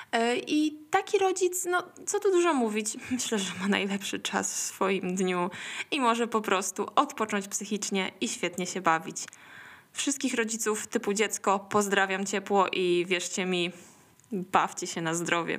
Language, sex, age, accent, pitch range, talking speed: Polish, female, 20-39, native, 190-255 Hz, 150 wpm